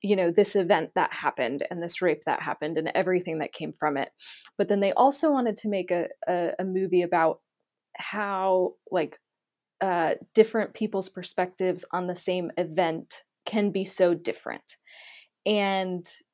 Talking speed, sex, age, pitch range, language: 160 wpm, female, 20-39, 185-235 Hz, English